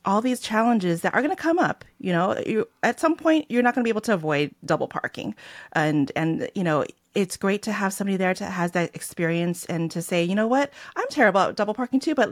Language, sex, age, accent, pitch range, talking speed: English, female, 30-49, American, 160-220 Hz, 255 wpm